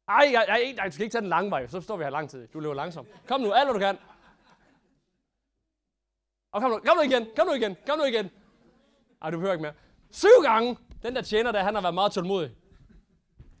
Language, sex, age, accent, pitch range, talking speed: Danish, male, 30-49, native, 195-250 Hz, 235 wpm